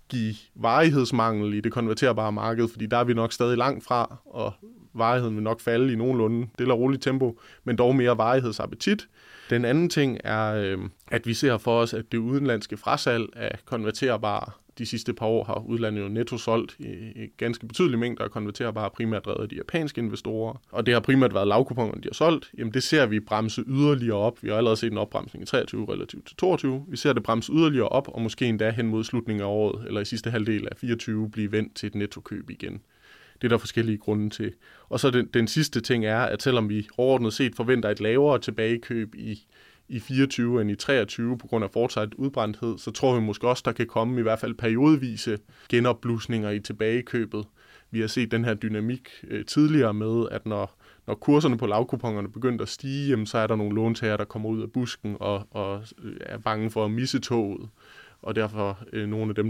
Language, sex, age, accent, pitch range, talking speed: Danish, male, 20-39, native, 110-125 Hz, 215 wpm